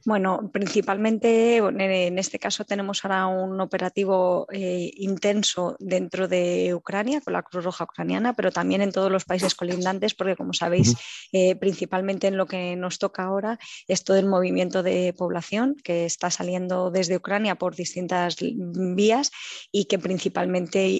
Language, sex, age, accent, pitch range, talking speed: English, female, 20-39, Spanish, 180-200 Hz, 155 wpm